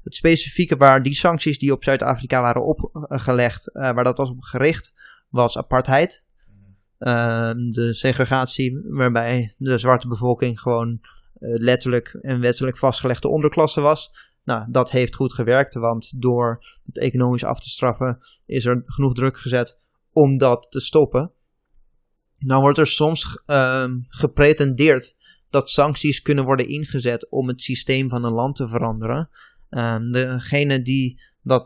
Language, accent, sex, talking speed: Dutch, Dutch, male, 145 wpm